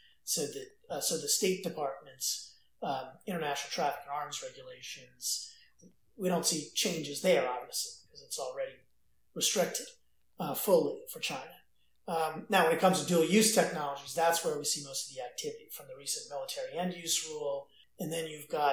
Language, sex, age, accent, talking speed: English, male, 40-59, American, 165 wpm